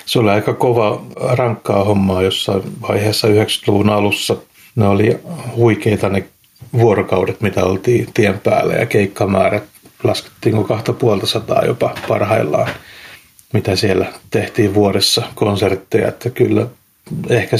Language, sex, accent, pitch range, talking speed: Finnish, male, native, 100-120 Hz, 120 wpm